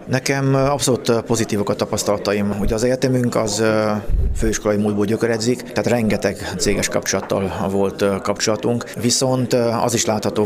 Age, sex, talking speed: 30-49, male, 125 wpm